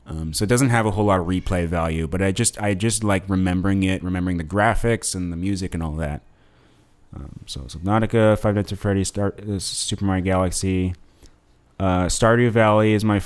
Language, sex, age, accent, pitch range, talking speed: English, male, 30-49, American, 90-105 Hz, 205 wpm